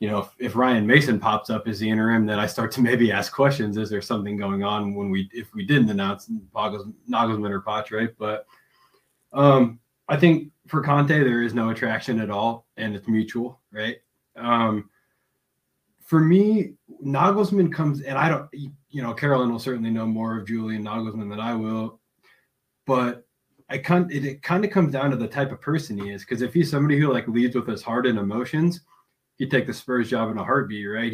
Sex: male